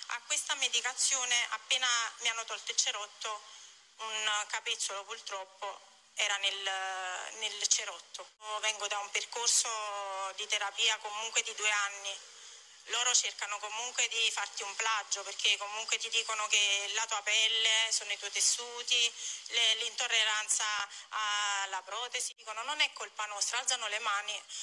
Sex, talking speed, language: female, 135 wpm, Italian